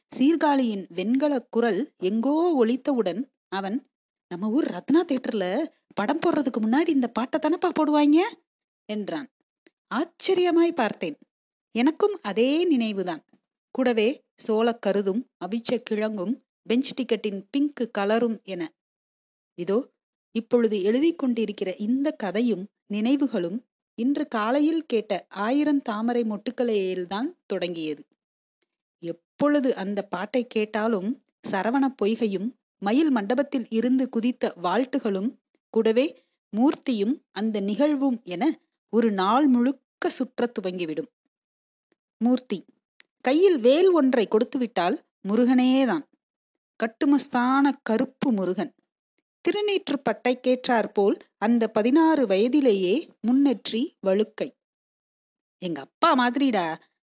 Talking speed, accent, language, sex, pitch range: 95 wpm, native, Tamil, female, 215-280 Hz